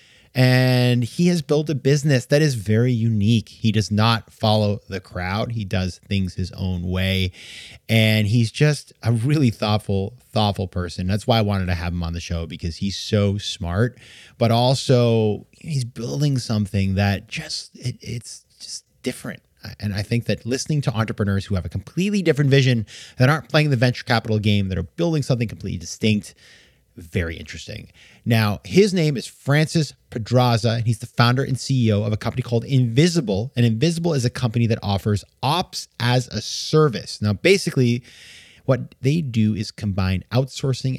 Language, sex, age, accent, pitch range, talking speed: English, male, 30-49, American, 100-130 Hz, 175 wpm